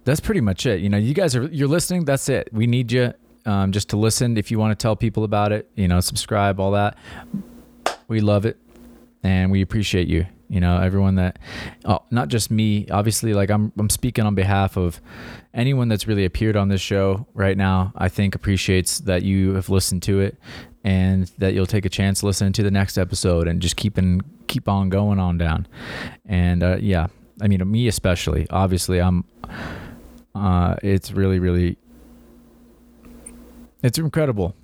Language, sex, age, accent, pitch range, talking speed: English, male, 20-39, American, 95-120 Hz, 190 wpm